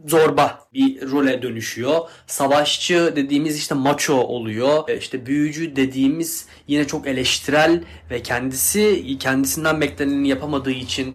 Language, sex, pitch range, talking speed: Turkish, male, 130-170 Hz, 115 wpm